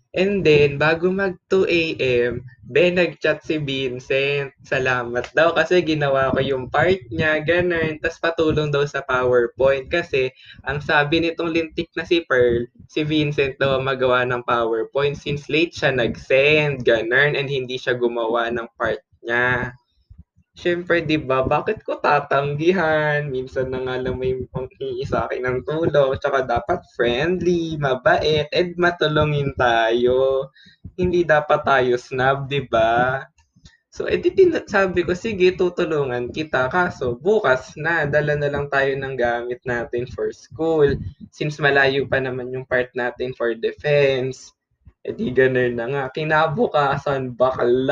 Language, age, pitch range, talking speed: Filipino, 20-39, 125-160 Hz, 140 wpm